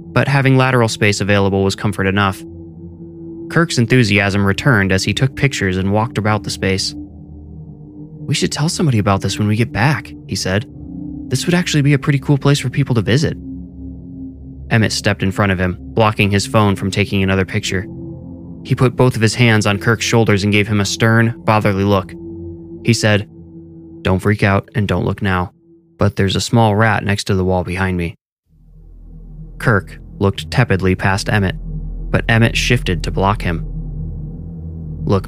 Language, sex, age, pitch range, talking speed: English, male, 20-39, 85-120 Hz, 180 wpm